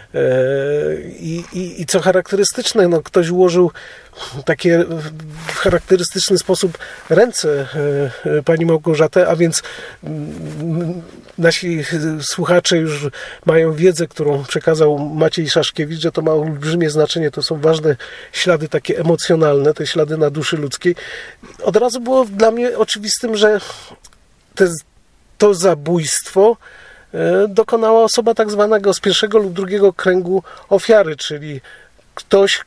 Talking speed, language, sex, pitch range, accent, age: 120 wpm, Polish, male, 160-195 Hz, native, 40-59